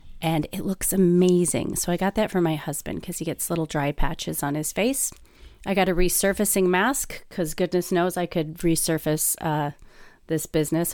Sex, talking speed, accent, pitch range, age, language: female, 185 wpm, American, 160-200 Hz, 30-49, English